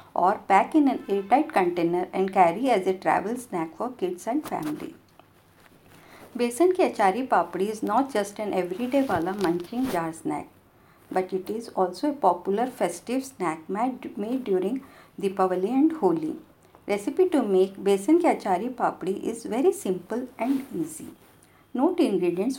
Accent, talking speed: native, 150 wpm